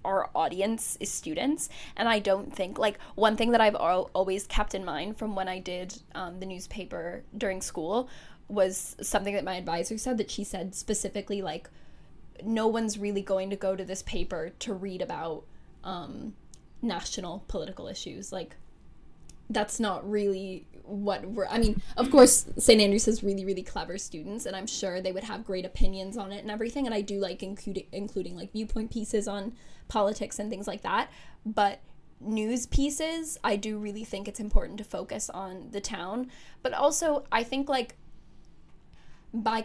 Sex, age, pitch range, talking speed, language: female, 10-29, 195-220 Hz, 175 wpm, English